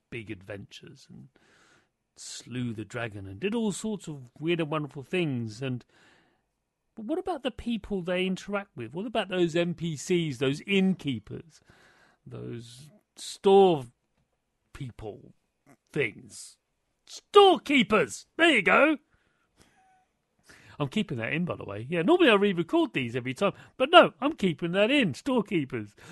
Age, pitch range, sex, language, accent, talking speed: 40-59, 140-225 Hz, male, English, British, 135 wpm